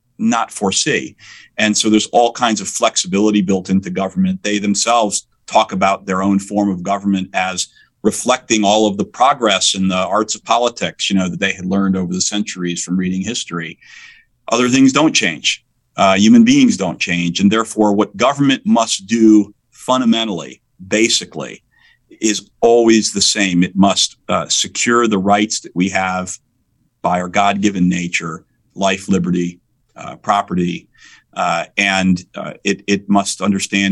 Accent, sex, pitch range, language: American, male, 95-110 Hz, English